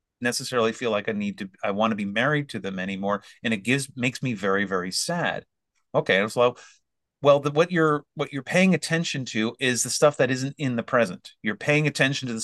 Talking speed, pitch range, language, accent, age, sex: 210 wpm, 115-165 Hz, English, American, 30-49, male